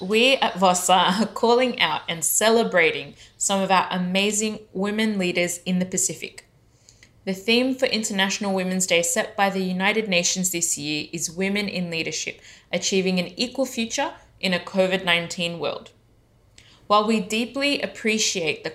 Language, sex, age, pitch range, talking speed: English, female, 20-39, 170-215 Hz, 150 wpm